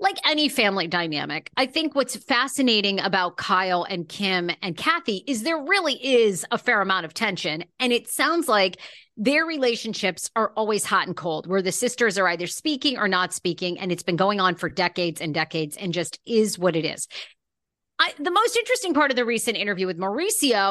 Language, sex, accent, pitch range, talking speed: English, female, American, 185-280 Hz, 195 wpm